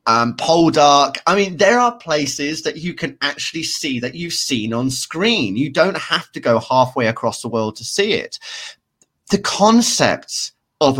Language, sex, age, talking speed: English, male, 30-49, 175 wpm